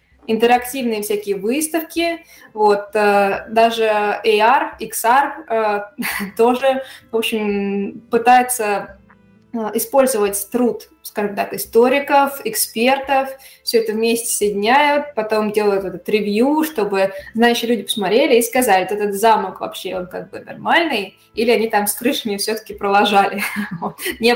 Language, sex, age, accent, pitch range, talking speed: Russian, female, 20-39, native, 200-235 Hz, 115 wpm